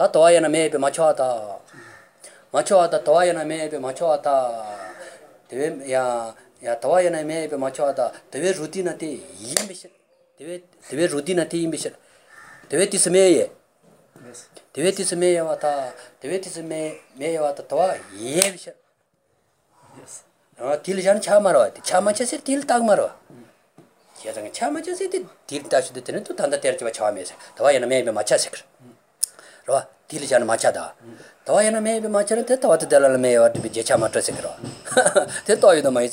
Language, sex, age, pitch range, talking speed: English, male, 30-49, 145-200 Hz, 90 wpm